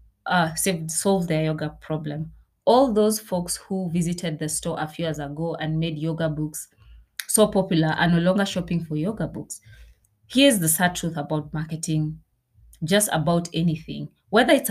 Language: English